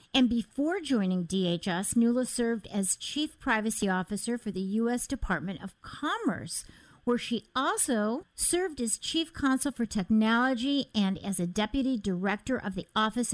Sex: female